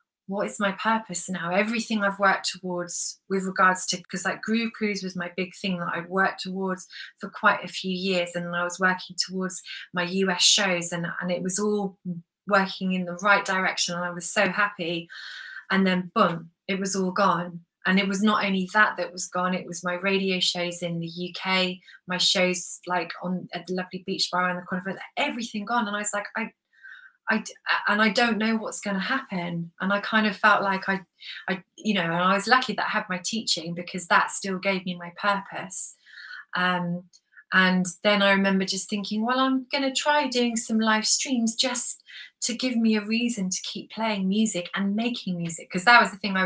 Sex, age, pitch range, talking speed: female, 20-39, 180-215 Hz, 215 wpm